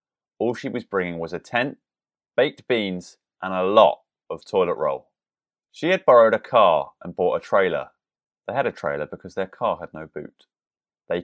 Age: 30-49